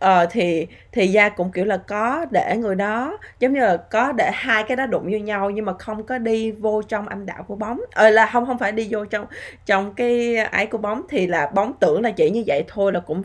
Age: 20-39